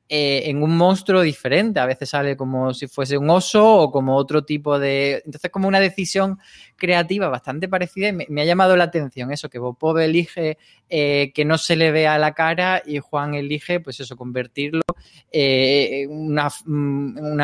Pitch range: 130-160 Hz